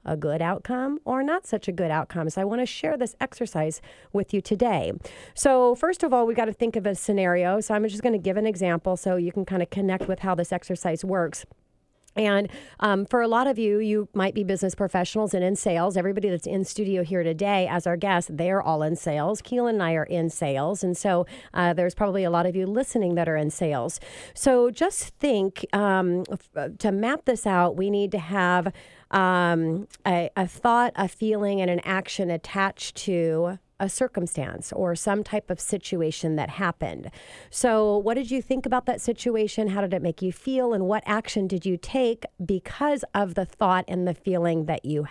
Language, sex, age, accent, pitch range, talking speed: English, female, 40-59, American, 175-220 Hz, 210 wpm